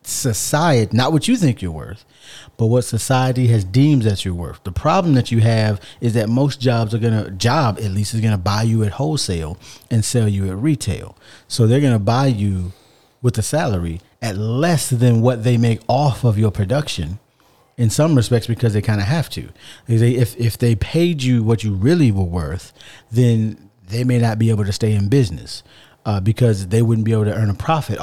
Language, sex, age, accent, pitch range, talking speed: English, male, 40-59, American, 105-130 Hz, 215 wpm